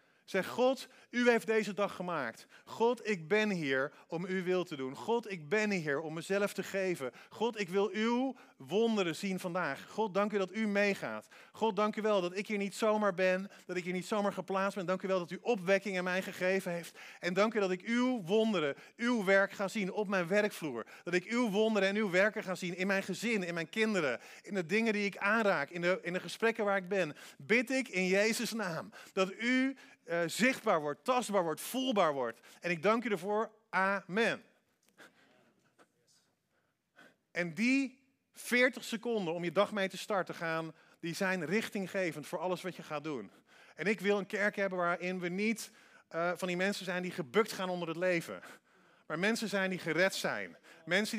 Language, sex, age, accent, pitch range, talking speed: Dutch, male, 40-59, Dutch, 180-220 Hz, 205 wpm